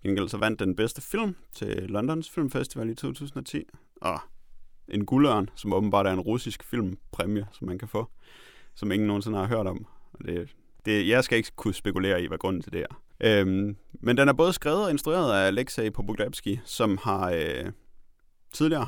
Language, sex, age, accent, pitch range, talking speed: Danish, male, 30-49, native, 95-120 Hz, 185 wpm